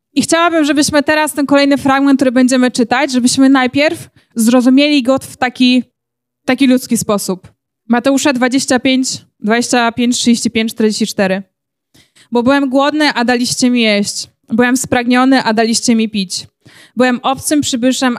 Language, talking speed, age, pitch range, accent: Polish, 130 wpm, 20-39, 225-265 Hz, native